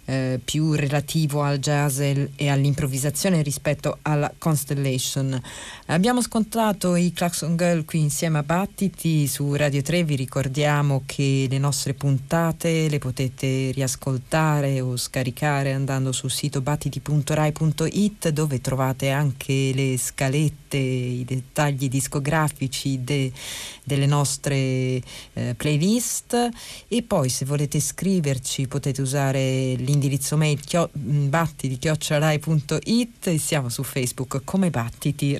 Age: 40-59